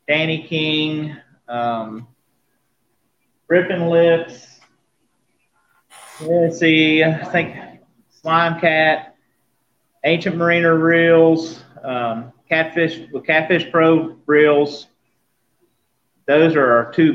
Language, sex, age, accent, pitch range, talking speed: English, male, 30-49, American, 125-155 Hz, 85 wpm